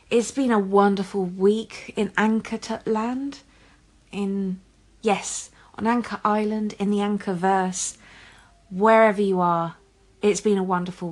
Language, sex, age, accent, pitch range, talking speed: English, female, 30-49, British, 180-220 Hz, 125 wpm